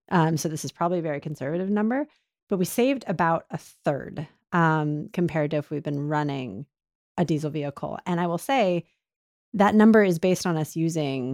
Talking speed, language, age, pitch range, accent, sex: 190 wpm, English, 30-49, 145-180 Hz, American, female